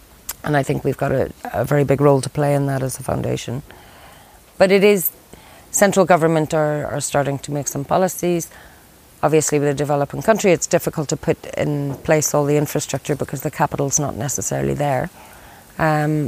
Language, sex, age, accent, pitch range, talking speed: English, female, 30-49, Irish, 140-160 Hz, 185 wpm